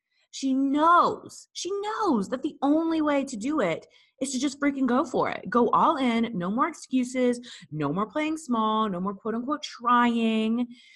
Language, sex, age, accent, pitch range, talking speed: English, female, 20-39, American, 210-290 Hz, 180 wpm